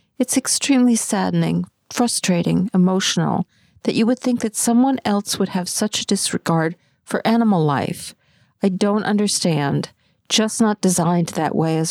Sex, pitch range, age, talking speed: female, 170-220 Hz, 50-69, 145 wpm